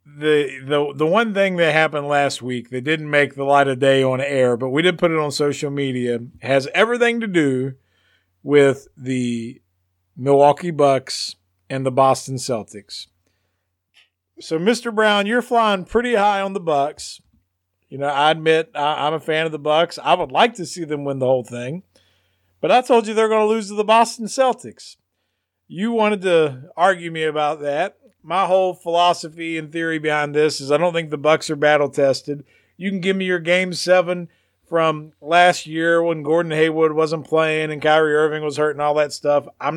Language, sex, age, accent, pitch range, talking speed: English, male, 50-69, American, 135-175 Hz, 195 wpm